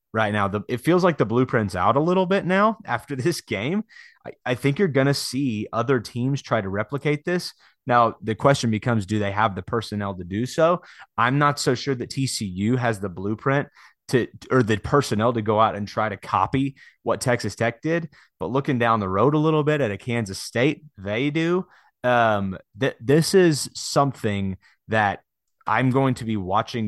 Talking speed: 195 wpm